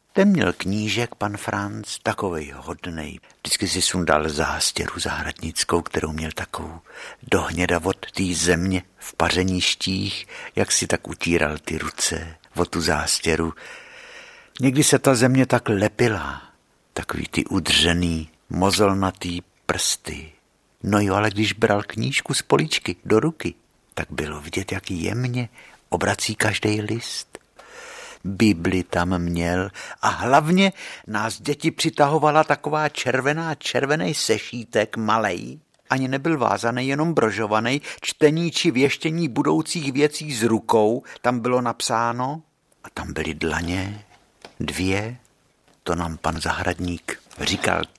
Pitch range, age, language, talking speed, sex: 90-130 Hz, 60-79, Czech, 120 wpm, male